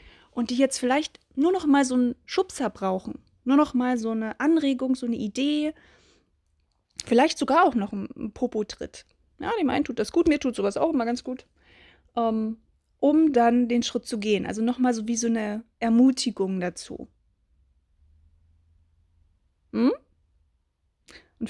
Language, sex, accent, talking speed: German, female, German, 155 wpm